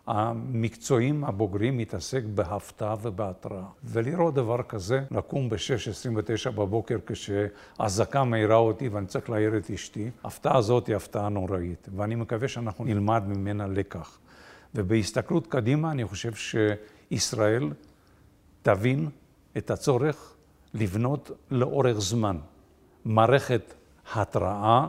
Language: Hebrew